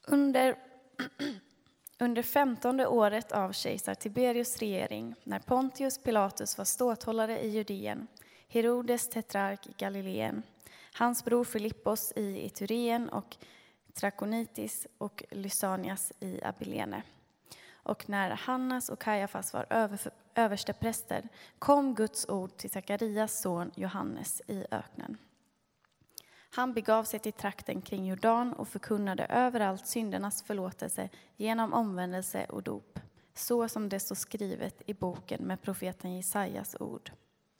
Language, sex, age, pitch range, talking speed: Swedish, female, 20-39, 200-235 Hz, 120 wpm